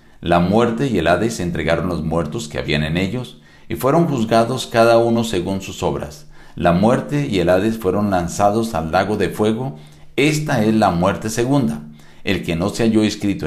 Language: Spanish